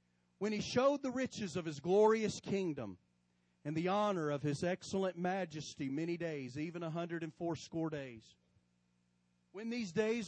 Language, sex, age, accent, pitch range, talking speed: English, male, 40-59, American, 125-195 Hz, 145 wpm